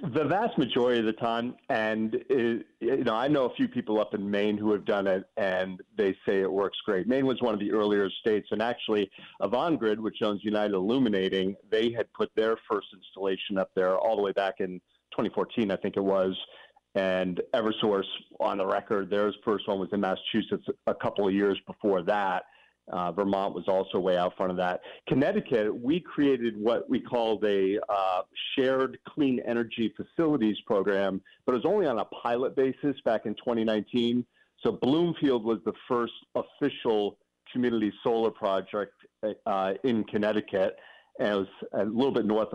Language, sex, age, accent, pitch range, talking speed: English, male, 40-59, American, 95-115 Hz, 180 wpm